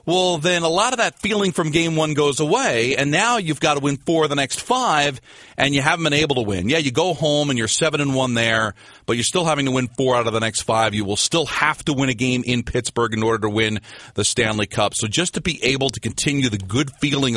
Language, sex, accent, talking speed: English, male, American, 270 wpm